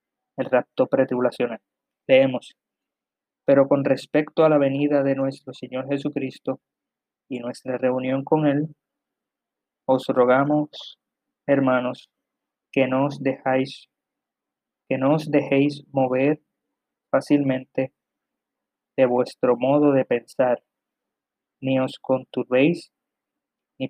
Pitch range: 130-145 Hz